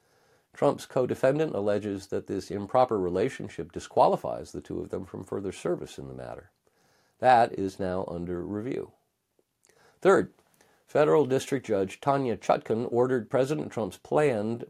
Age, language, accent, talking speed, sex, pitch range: 50-69, English, American, 135 wpm, male, 95-130 Hz